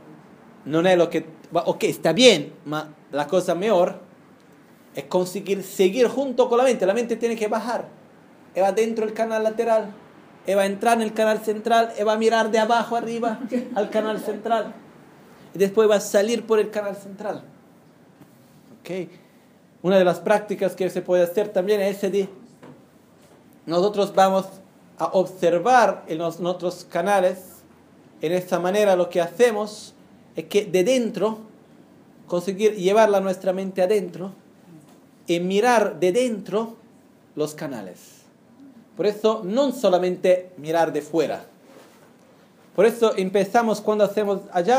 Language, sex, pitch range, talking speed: Italian, male, 180-220 Hz, 145 wpm